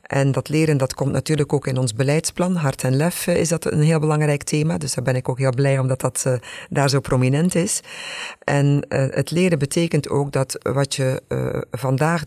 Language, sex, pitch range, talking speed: Dutch, female, 130-155 Hz, 205 wpm